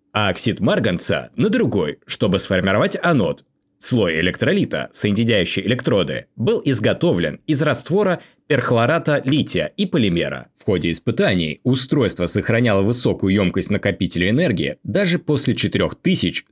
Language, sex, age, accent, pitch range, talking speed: Russian, male, 20-39, native, 95-155 Hz, 115 wpm